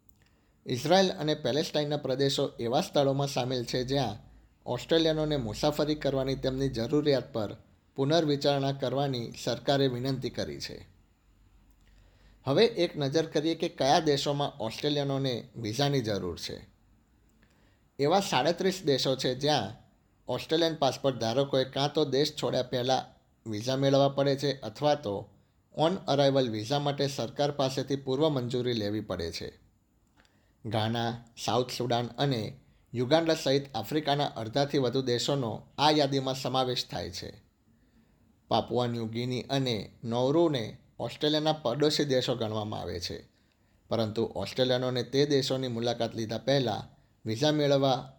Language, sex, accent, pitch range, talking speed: Gujarati, male, native, 115-140 Hz, 115 wpm